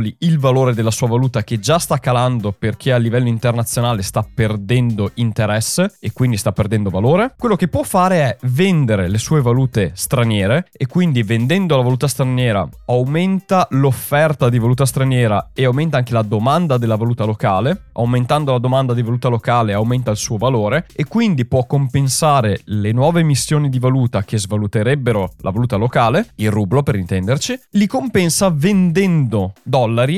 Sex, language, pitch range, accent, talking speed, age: male, Italian, 115-160 Hz, native, 165 wpm, 20-39